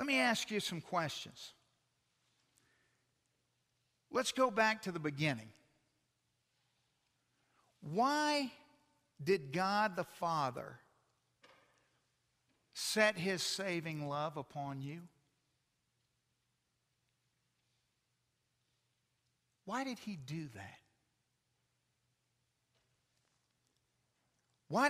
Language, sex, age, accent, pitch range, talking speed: English, male, 50-69, American, 125-175 Hz, 70 wpm